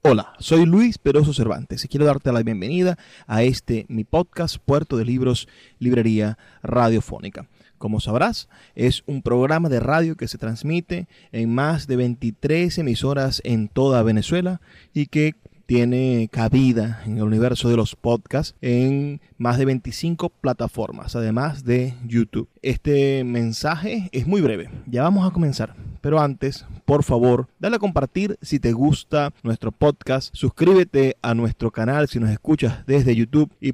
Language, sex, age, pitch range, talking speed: Spanish, male, 30-49, 115-150 Hz, 155 wpm